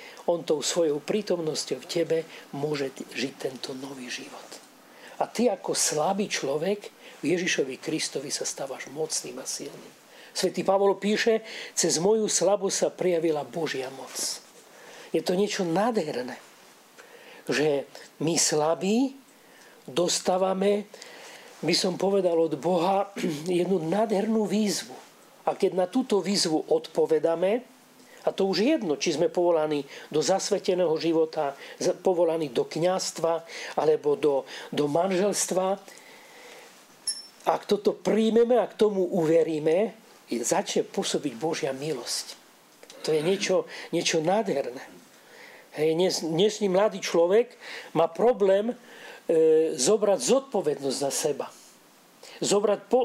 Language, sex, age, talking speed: Slovak, male, 40-59, 110 wpm